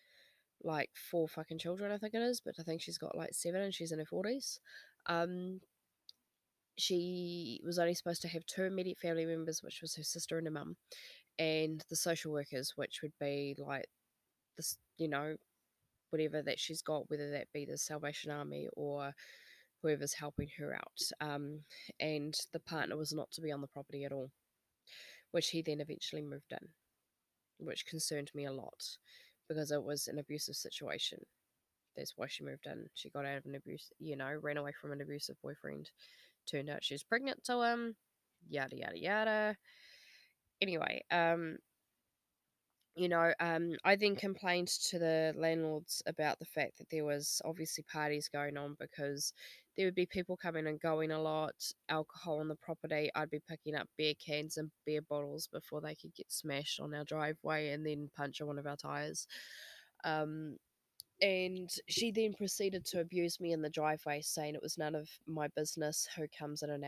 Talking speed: 185 wpm